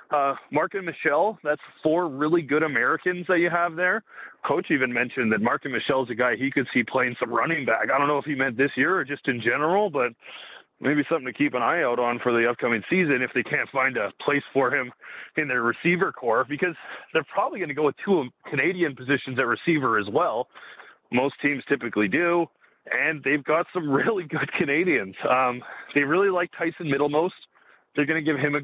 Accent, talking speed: American, 220 wpm